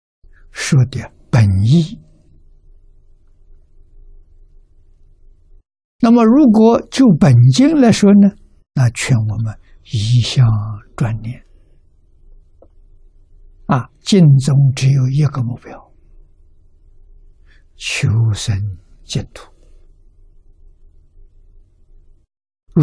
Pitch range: 80-120 Hz